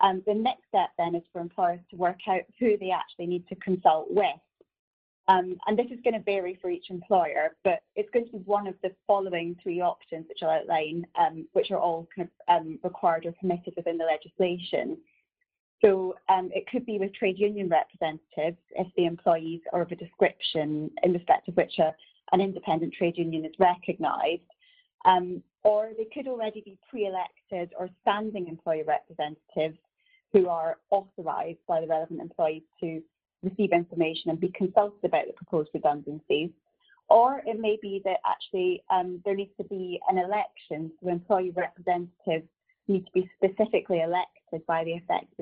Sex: female